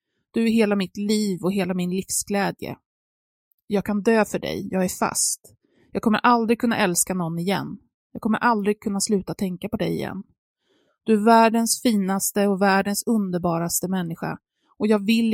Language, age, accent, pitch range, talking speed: Swedish, 20-39, native, 190-235 Hz, 170 wpm